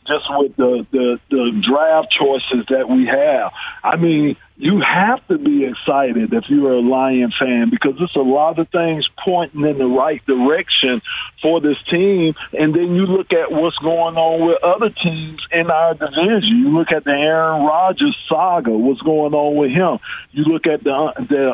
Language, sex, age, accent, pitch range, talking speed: English, male, 50-69, American, 140-175 Hz, 185 wpm